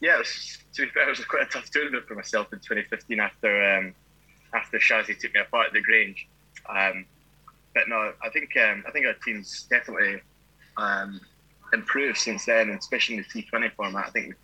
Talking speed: 195 wpm